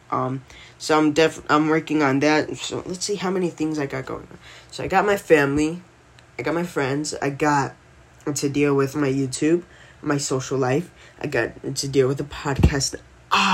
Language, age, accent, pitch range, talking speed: English, 10-29, American, 135-155 Hz, 195 wpm